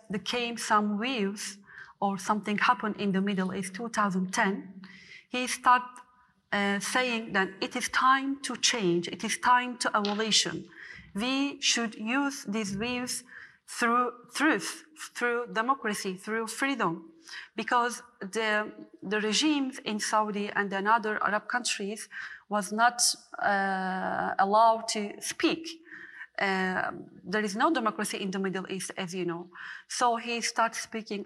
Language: English